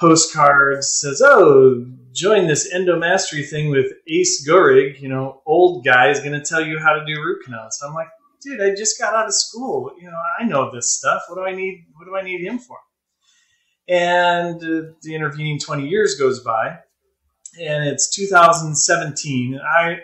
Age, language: 30-49, English